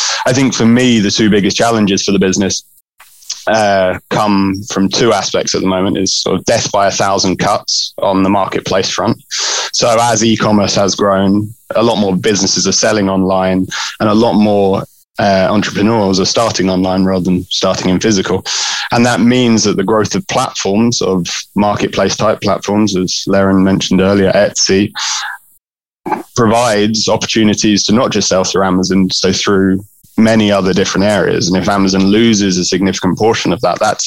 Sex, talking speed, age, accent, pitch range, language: male, 175 wpm, 20-39, British, 95-105 Hz, English